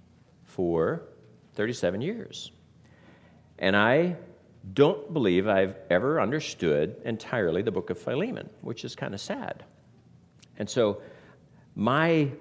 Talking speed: 110 wpm